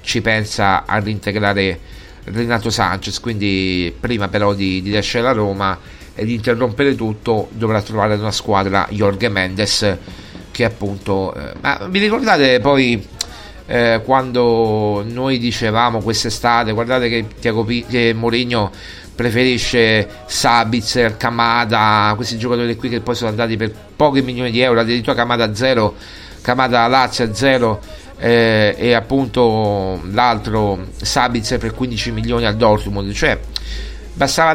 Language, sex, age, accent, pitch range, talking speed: Italian, male, 40-59, native, 100-120 Hz, 135 wpm